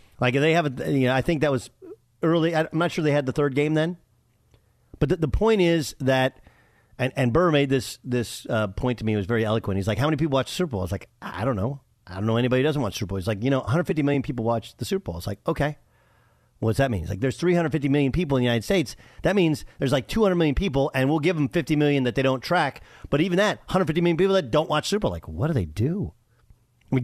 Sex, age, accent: male, 40-59, American